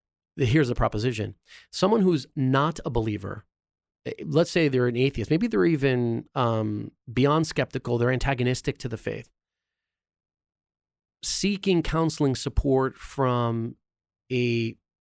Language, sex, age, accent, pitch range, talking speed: English, male, 30-49, American, 110-140 Hz, 115 wpm